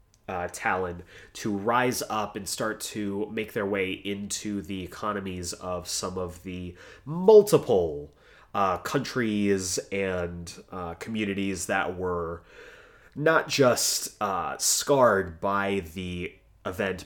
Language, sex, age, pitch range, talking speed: English, male, 30-49, 95-125 Hz, 115 wpm